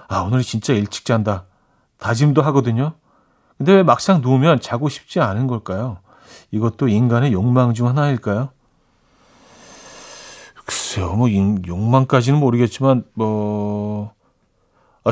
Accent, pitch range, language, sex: native, 110-150 Hz, Korean, male